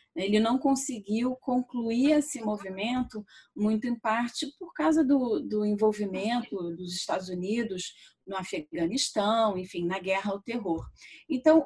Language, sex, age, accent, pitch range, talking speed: Portuguese, female, 30-49, Brazilian, 200-255 Hz, 130 wpm